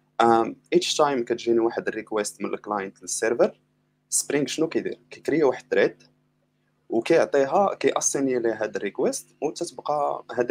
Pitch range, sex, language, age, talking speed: 105-145 Hz, male, Arabic, 20-39, 120 wpm